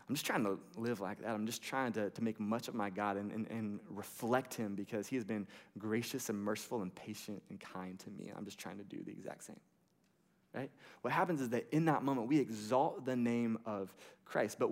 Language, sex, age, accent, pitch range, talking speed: English, male, 20-39, American, 105-150 Hz, 235 wpm